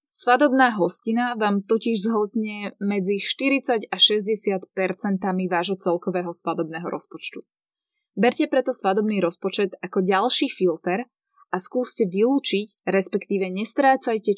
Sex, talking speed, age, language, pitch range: female, 105 wpm, 20-39, Slovak, 185-240 Hz